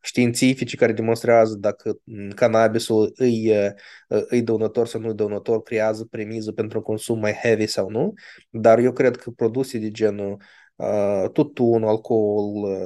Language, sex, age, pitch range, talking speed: Romanian, male, 20-39, 105-130 Hz, 140 wpm